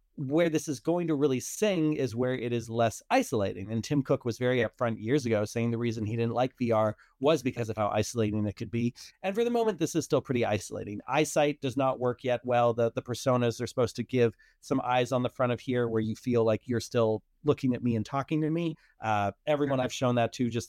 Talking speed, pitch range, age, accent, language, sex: 245 wpm, 115-140 Hz, 30-49, American, English, male